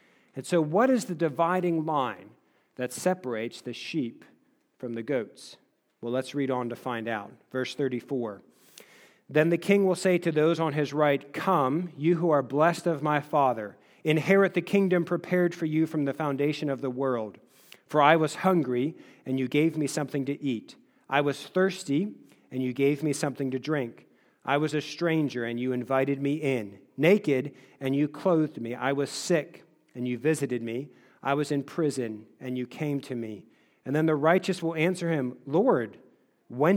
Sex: male